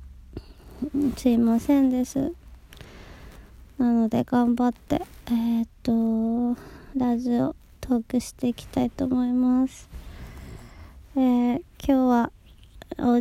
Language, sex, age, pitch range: Japanese, male, 20-39, 230-260 Hz